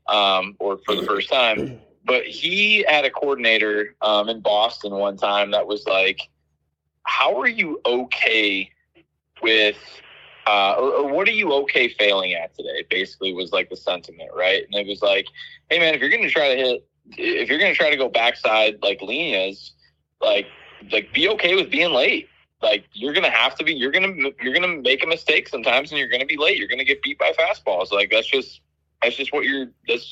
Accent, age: American, 20-39